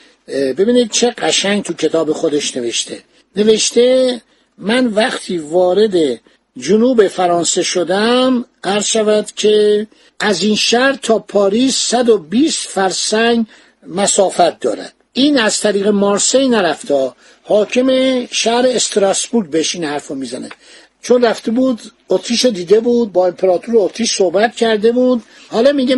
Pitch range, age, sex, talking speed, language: 195-245 Hz, 60-79, male, 120 wpm, Persian